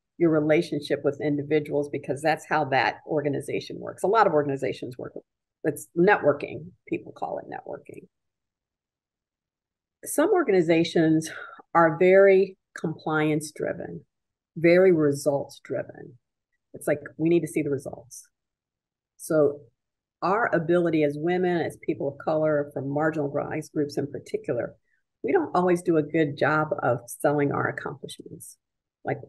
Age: 50-69